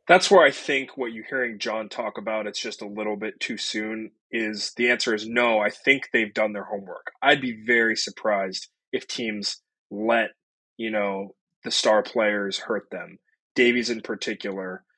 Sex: male